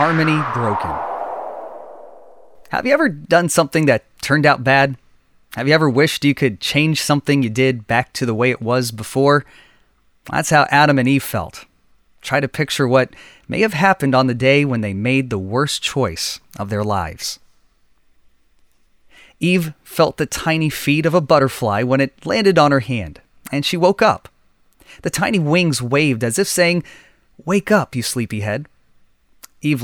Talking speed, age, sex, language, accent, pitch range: 165 wpm, 30-49, male, English, American, 120-170 Hz